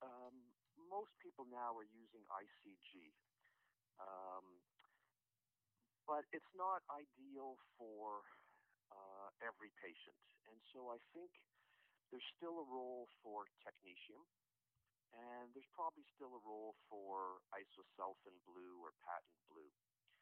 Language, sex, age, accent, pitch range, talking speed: English, male, 40-59, American, 100-130 Hz, 115 wpm